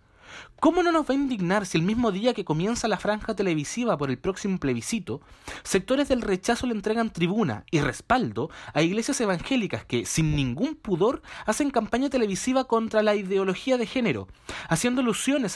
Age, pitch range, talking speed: 30-49, 150-245 Hz, 170 wpm